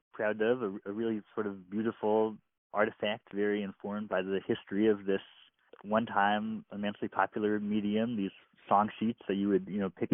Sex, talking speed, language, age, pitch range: male, 170 wpm, English, 20-39, 95-110 Hz